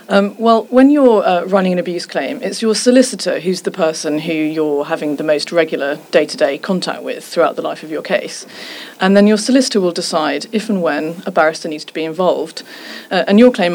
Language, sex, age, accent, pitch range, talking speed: English, female, 30-49, British, 160-200 Hz, 215 wpm